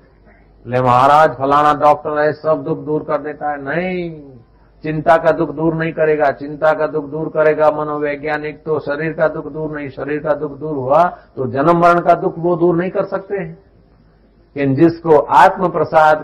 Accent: native